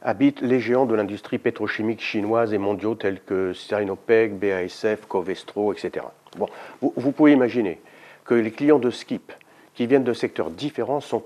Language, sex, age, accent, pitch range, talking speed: French, male, 50-69, French, 110-155 Hz, 165 wpm